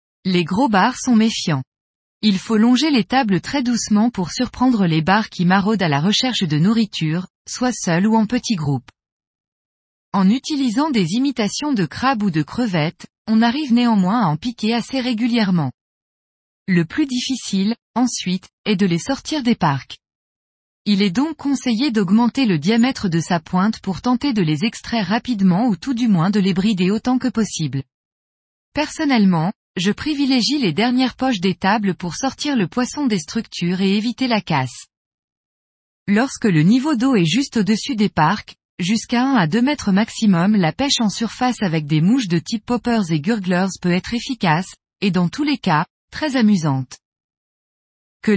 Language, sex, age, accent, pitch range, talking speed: French, female, 20-39, French, 180-245 Hz, 170 wpm